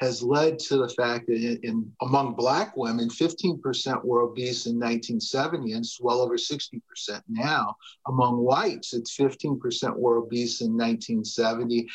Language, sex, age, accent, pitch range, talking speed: English, male, 50-69, American, 120-170 Hz, 140 wpm